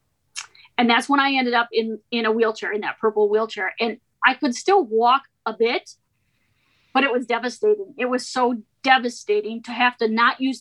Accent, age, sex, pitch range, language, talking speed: American, 30-49, female, 225-285 Hz, English, 190 wpm